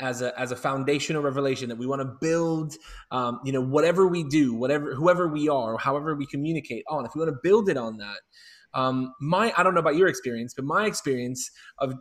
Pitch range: 135-185 Hz